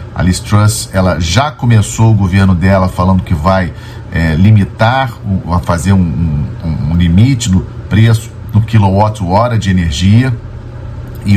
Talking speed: 135 wpm